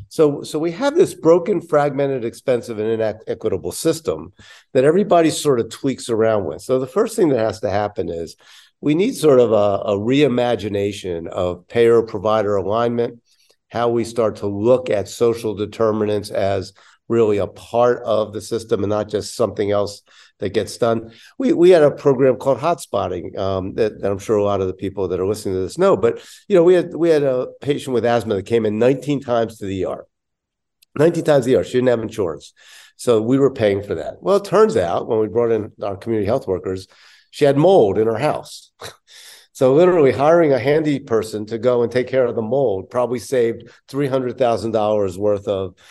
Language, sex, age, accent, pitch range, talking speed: English, male, 50-69, American, 105-140 Hz, 200 wpm